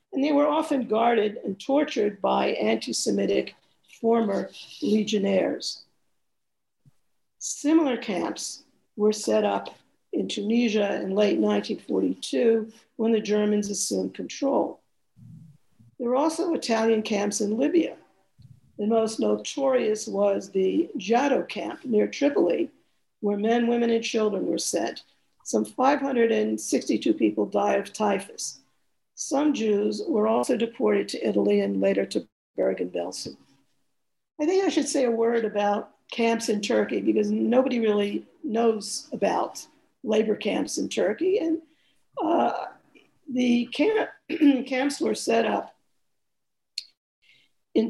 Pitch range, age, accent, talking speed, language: 205-270 Hz, 50-69, American, 120 wpm, English